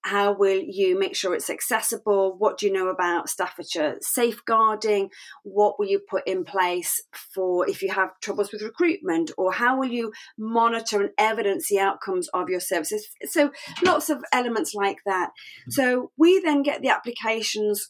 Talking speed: 170 wpm